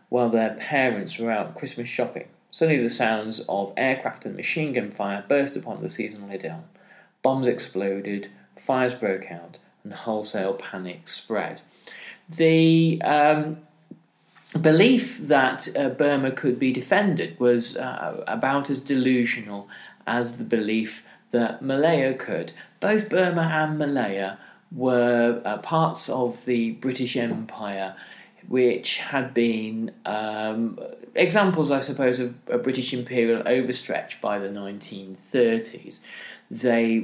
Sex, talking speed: male, 125 wpm